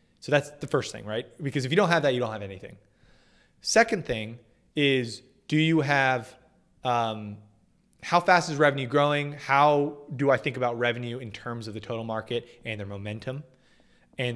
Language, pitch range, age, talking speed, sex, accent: English, 115-145 Hz, 20-39, 185 wpm, male, American